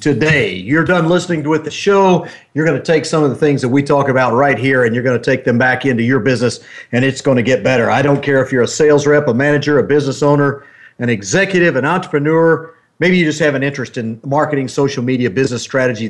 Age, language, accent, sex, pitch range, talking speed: 50-69, English, American, male, 130-160 Hz, 240 wpm